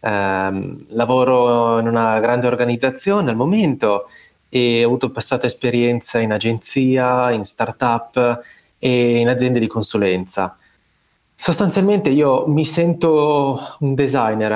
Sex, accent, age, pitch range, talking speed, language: male, native, 20-39, 110-130 Hz, 115 wpm, Italian